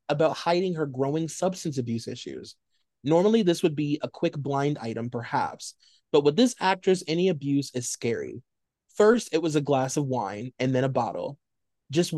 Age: 30-49